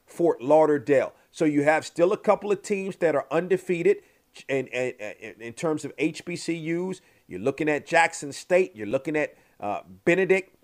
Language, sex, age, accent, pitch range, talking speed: English, male, 40-59, American, 145-185 Hz, 165 wpm